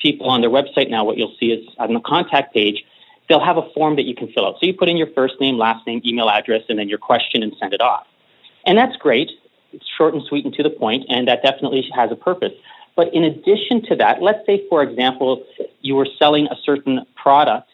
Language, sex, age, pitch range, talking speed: English, male, 40-59, 130-155 Hz, 245 wpm